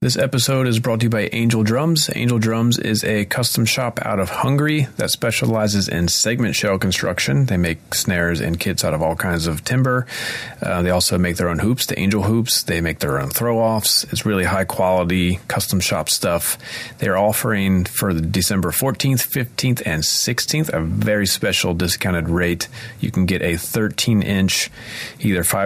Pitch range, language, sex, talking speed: 90-115 Hz, English, male, 175 wpm